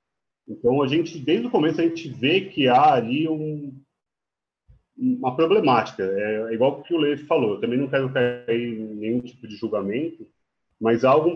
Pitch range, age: 115-160 Hz, 30-49